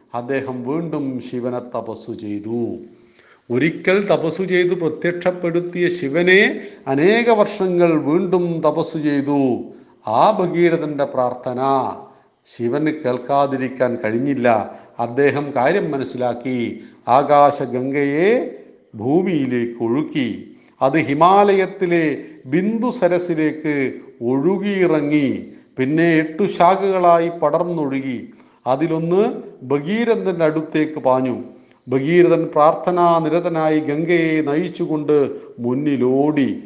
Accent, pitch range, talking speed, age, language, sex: native, 135-175 Hz, 60 wpm, 50-69, Hindi, male